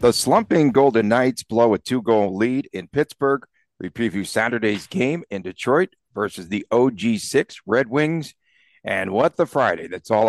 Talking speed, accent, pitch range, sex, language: 155 wpm, American, 105-130 Hz, male, English